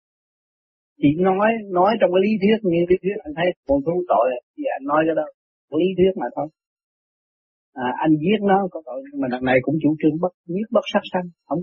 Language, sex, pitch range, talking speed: Vietnamese, male, 140-195 Hz, 220 wpm